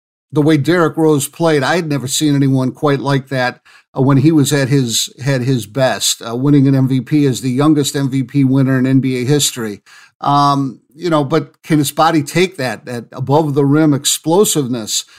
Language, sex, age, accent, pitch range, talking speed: English, male, 50-69, American, 135-170 Hz, 190 wpm